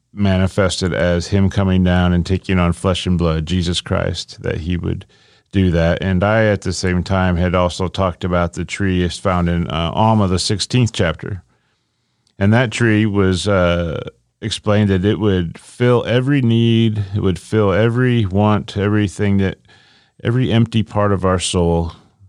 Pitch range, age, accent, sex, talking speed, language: 90-110 Hz, 40-59, American, male, 170 wpm, English